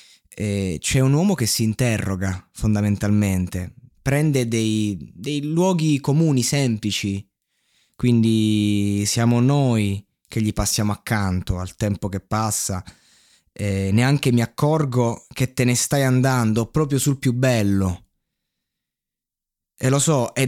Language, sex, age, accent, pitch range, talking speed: Italian, male, 20-39, native, 100-125 Hz, 115 wpm